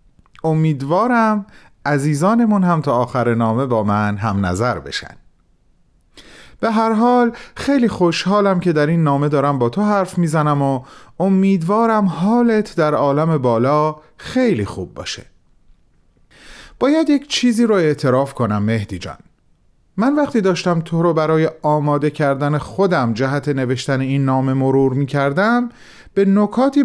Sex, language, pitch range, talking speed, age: male, Persian, 120-190 Hz, 130 wpm, 30-49